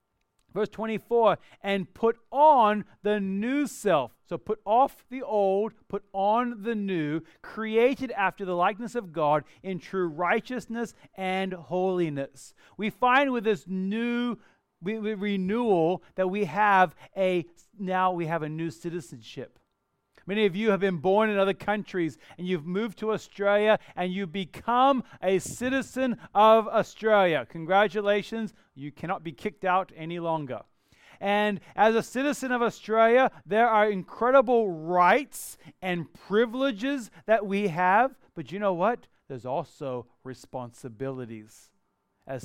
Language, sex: English, male